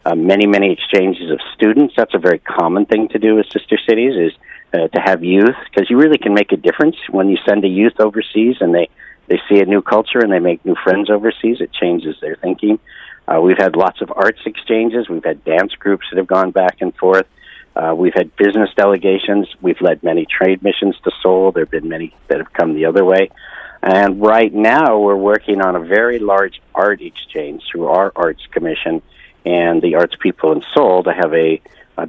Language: Korean